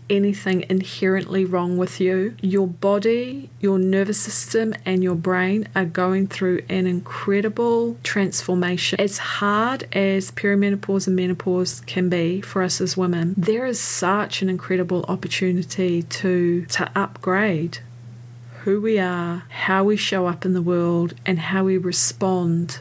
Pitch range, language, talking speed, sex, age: 180-200 Hz, English, 140 wpm, female, 40-59